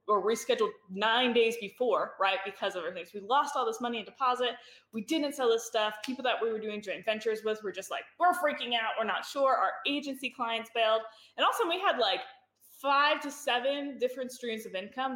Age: 20-39